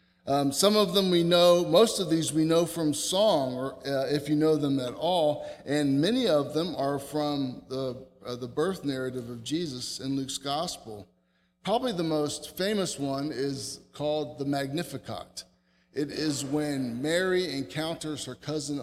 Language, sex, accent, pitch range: English, male, American, 130-170 Hz